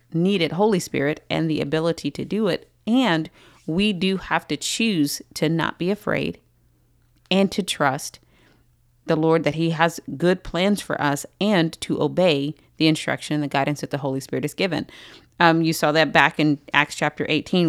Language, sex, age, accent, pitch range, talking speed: English, female, 30-49, American, 145-185 Hz, 185 wpm